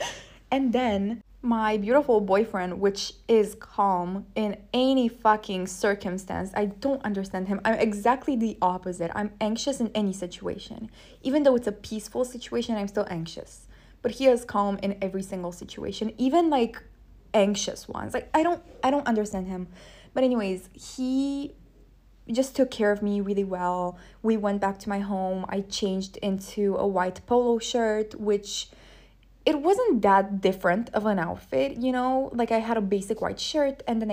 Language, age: English, 20-39